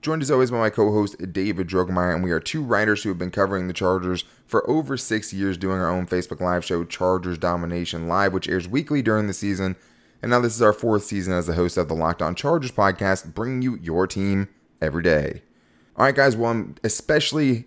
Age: 20-39